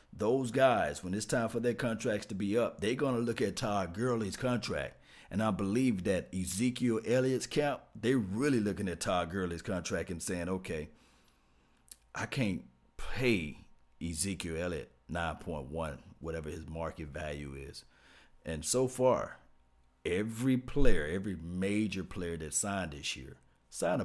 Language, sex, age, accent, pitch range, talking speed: English, male, 50-69, American, 80-110 Hz, 150 wpm